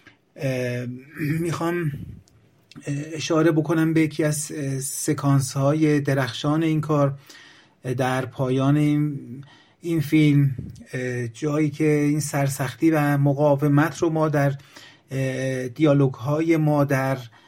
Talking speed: 95 wpm